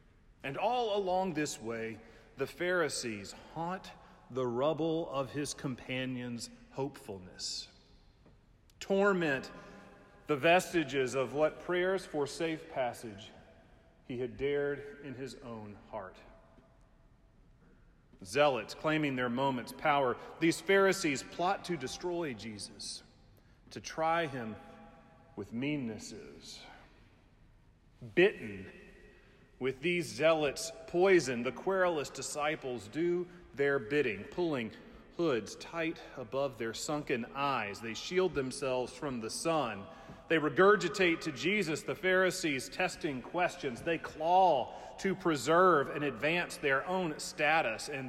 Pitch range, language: 130-175 Hz, English